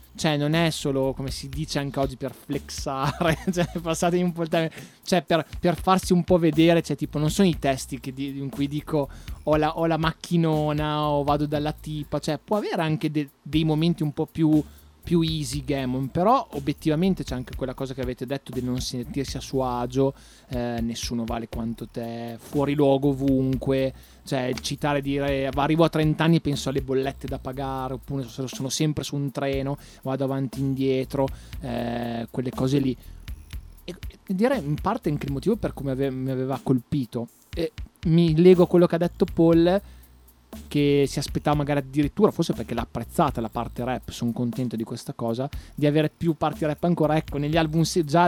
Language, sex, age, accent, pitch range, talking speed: Italian, male, 20-39, native, 130-155 Hz, 190 wpm